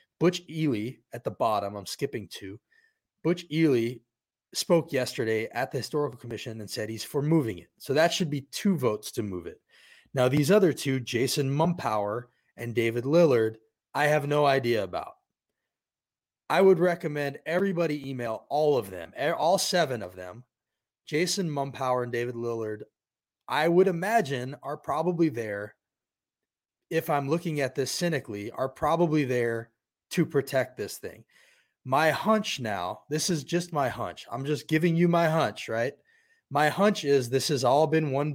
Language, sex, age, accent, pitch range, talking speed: English, male, 30-49, American, 120-165 Hz, 165 wpm